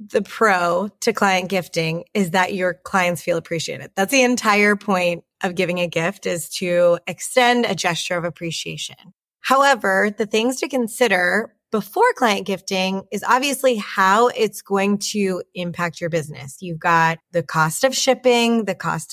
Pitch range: 175-215 Hz